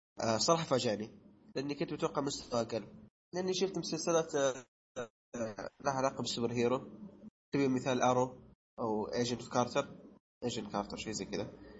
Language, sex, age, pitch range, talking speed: Arabic, male, 20-39, 115-155 Hz, 140 wpm